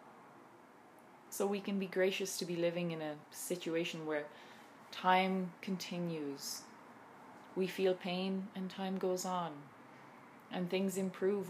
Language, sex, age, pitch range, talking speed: English, female, 20-39, 155-200 Hz, 125 wpm